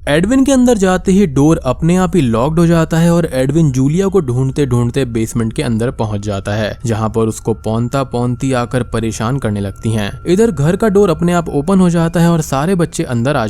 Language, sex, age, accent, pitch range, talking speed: Hindi, male, 20-39, native, 115-165 Hz, 220 wpm